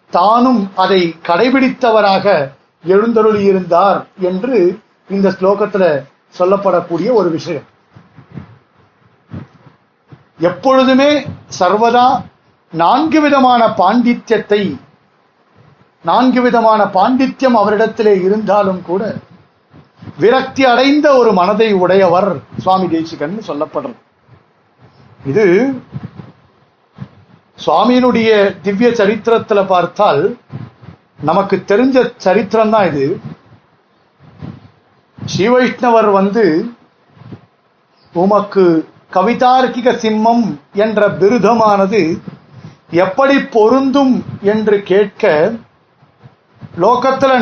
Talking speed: 65 wpm